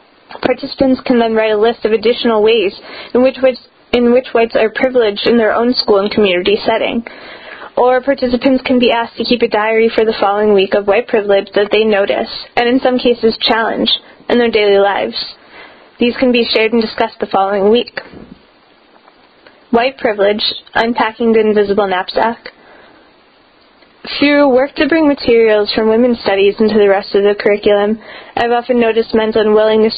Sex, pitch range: female, 210-240 Hz